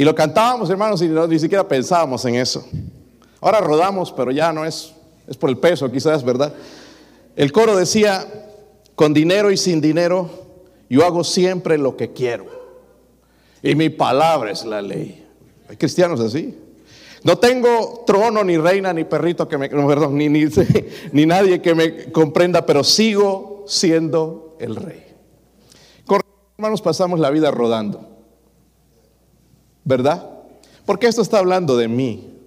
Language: Spanish